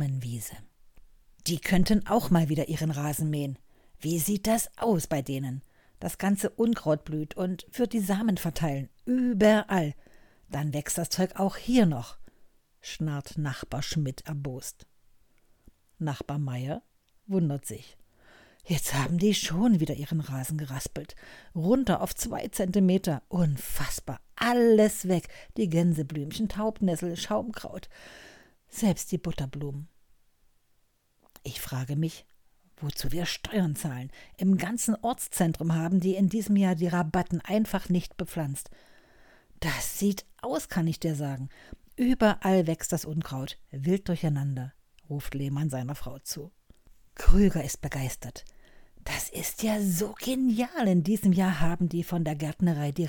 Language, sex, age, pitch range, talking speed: German, female, 60-79, 145-195 Hz, 130 wpm